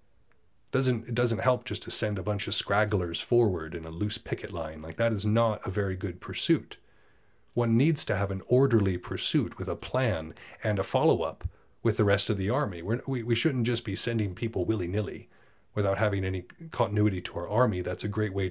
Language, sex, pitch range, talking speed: English, male, 95-115 Hz, 210 wpm